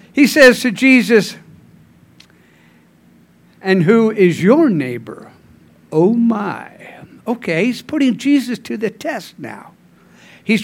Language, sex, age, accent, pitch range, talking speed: English, male, 60-79, American, 185-245 Hz, 115 wpm